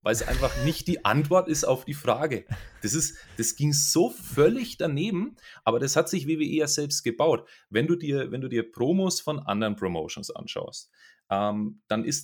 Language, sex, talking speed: German, male, 175 wpm